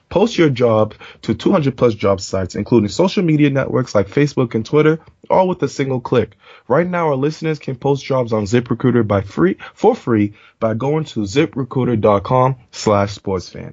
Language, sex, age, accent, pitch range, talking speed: English, male, 20-39, American, 105-145 Hz, 165 wpm